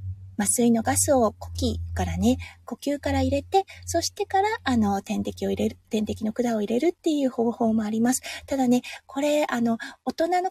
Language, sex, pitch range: Japanese, female, 215-295 Hz